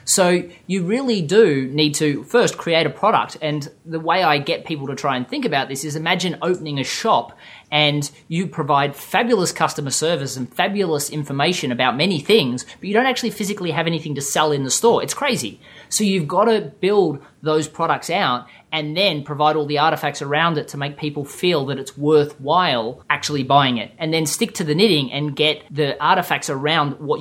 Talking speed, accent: 200 wpm, Australian